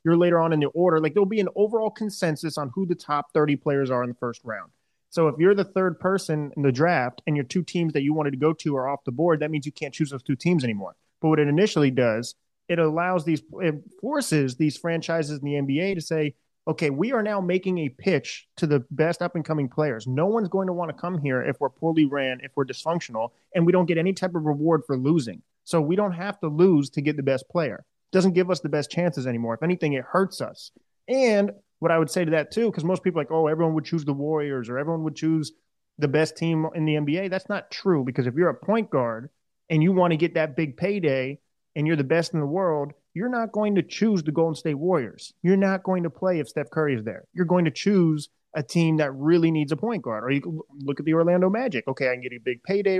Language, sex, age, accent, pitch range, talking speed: English, male, 30-49, American, 145-180 Hz, 265 wpm